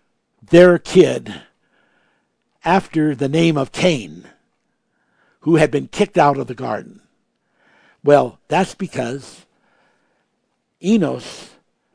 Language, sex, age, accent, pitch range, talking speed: English, male, 60-79, American, 155-240 Hz, 95 wpm